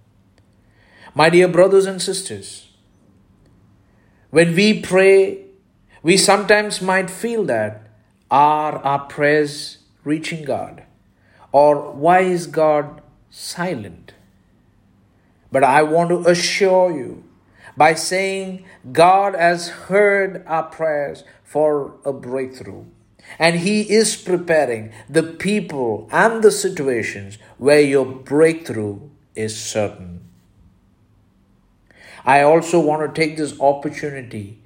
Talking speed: 105 wpm